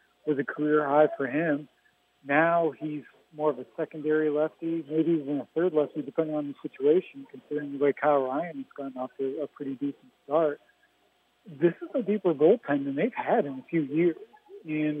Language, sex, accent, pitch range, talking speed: English, male, American, 145-170 Hz, 190 wpm